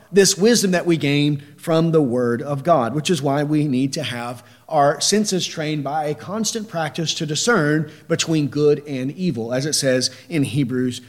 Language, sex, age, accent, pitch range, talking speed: English, male, 40-59, American, 145-190 Hz, 190 wpm